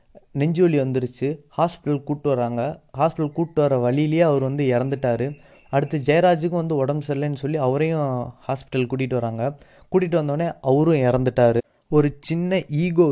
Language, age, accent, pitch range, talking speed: Tamil, 20-39, native, 130-155 Hz, 135 wpm